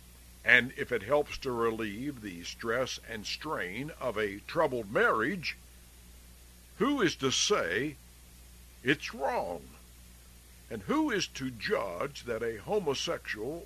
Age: 60-79